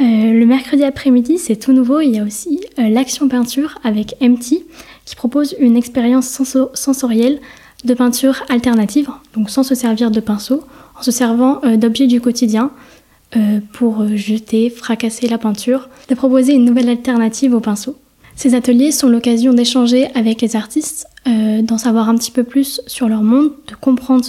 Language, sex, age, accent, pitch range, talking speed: French, female, 20-39, French, 230-265 Hz, 175 wpm